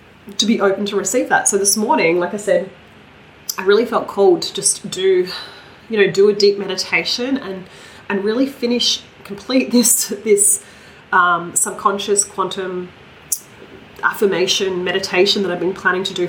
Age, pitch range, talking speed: 30-49, 190-225 Hz, 160 wpm